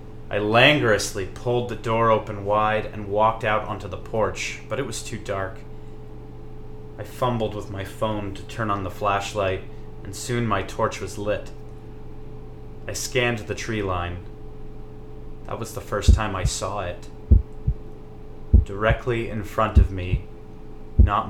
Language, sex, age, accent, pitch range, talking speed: English, male, 30-49, American, 95-110 Hz, 150 wpm